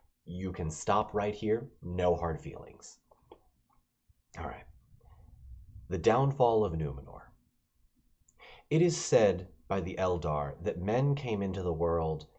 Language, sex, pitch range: English, male, 85-115 Hz